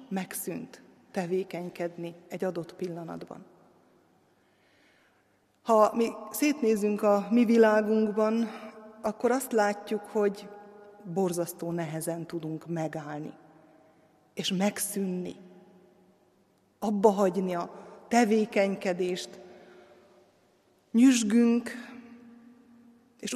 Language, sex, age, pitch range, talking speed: Hungarian, female, 30-49, 185-235 Hz, 70 wpm